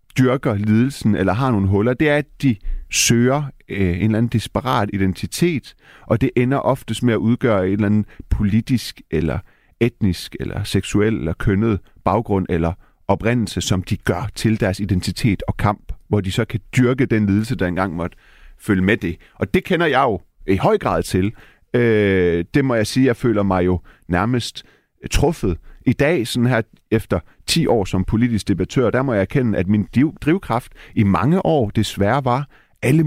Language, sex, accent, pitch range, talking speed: Danish, male, native, 95-120 Hz, 185 wpm